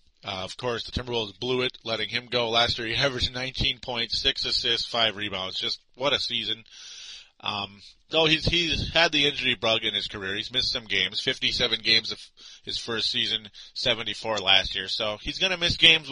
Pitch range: 100-125 Hz